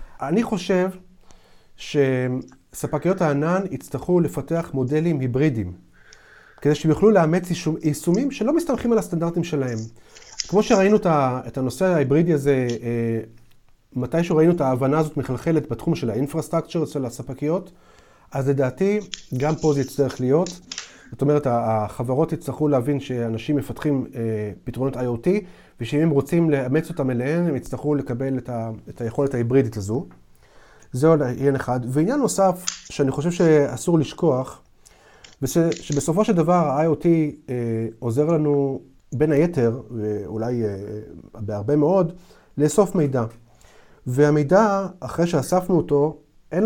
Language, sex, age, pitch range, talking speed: Hebrew, male, 30-49, 125-165 Hz, 125 wpm